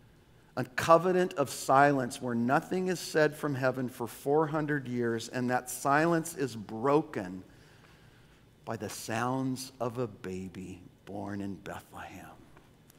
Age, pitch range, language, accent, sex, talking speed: 50-69, 125-165 Hz, English, American, male, 125 wpm